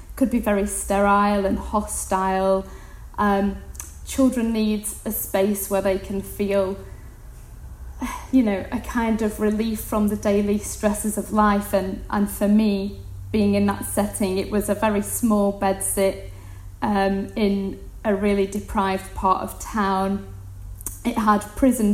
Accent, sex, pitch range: British, female, 195-215 Hz